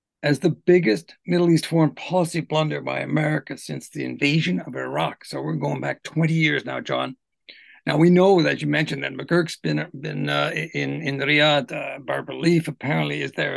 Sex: male